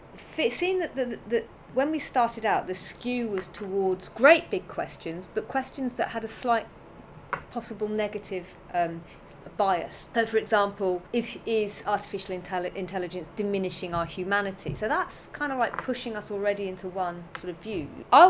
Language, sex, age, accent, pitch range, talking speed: English, female, 30-49, British, 180-230 Hz, 165 wpm